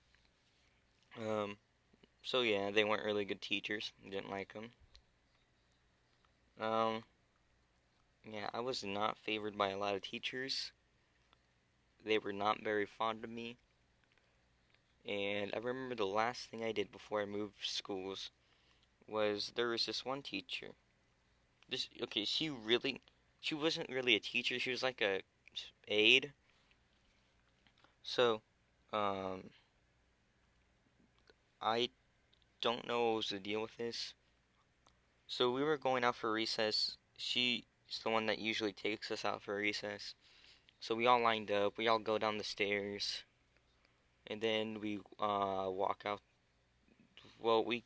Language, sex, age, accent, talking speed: English, male, 20-39, American, 140 wpm